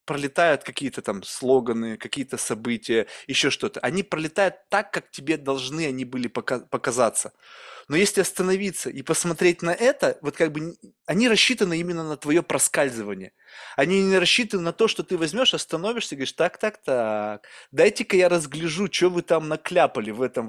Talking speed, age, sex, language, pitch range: 165 wpm, 20-39, male, Russian, 140-185 Hz